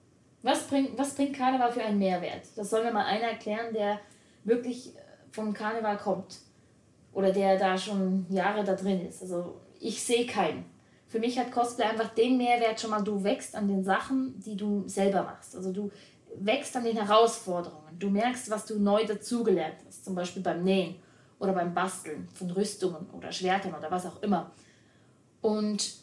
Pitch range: 190-225 Hz